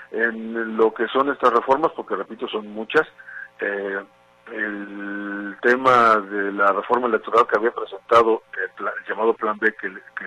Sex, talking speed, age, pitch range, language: male, 150 wpm, 50-69, 100-115 Hz, Spanish